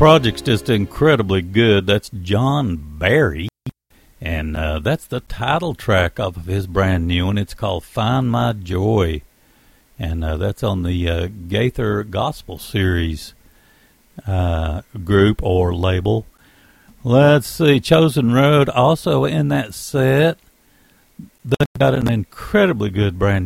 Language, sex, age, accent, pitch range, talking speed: English, male, 60-79, American, 95-135 Hz, 130 wpm